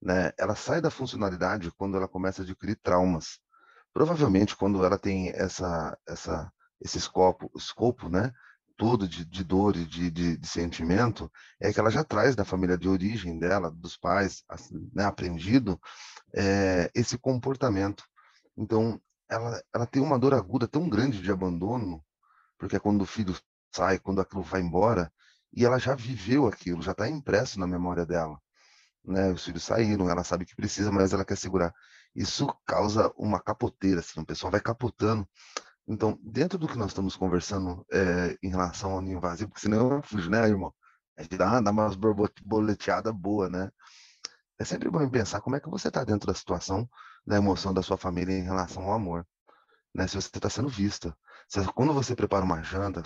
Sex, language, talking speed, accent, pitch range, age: male, Portuguese, 180 wpm, Brazilian, 90-110 Hz, 30-49